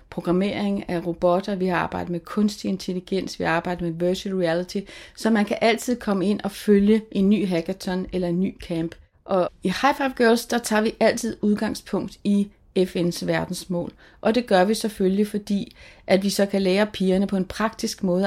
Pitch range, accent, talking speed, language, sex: 180-210 Hz, native, 195 wpm, Danish, female